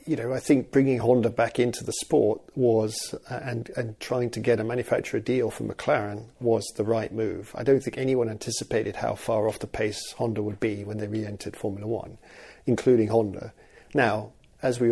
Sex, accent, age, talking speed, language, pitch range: male, British, 40-59, 195 wpm, English, 115-125 Hz